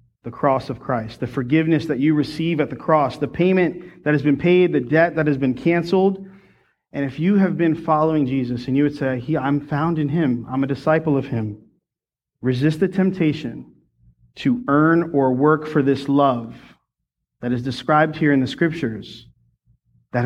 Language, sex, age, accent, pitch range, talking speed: English, male, 40-59, American, 125-170 Hz, 185 wpm